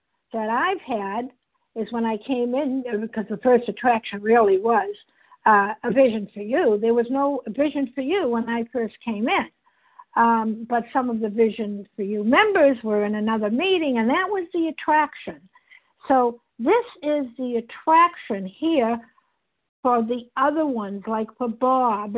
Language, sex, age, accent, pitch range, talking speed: English, female, 60-79, American, 230-310 Hz, 165 wpm